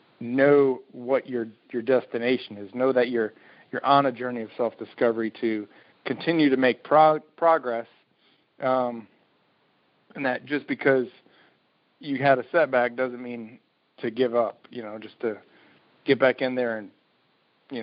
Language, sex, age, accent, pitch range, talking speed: English, male, 40-59, American, 110-130 Hz, 150 wpm